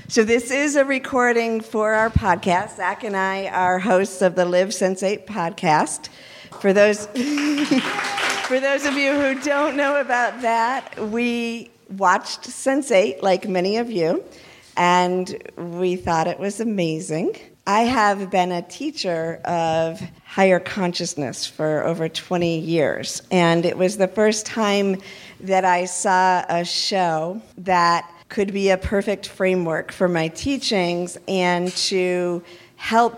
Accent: American